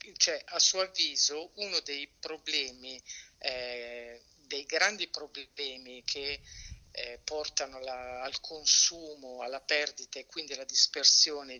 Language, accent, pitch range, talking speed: Italian, native, 130-155 Hz, 120 wpm